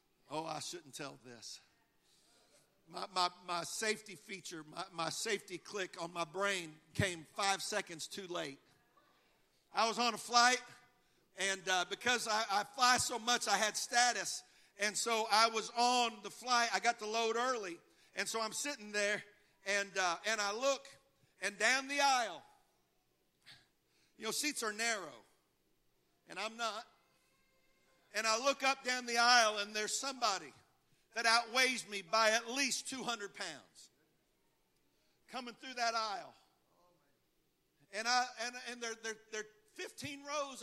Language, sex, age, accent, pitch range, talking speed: English, male, 50-69, American, 190-240 Hz, 150 wpm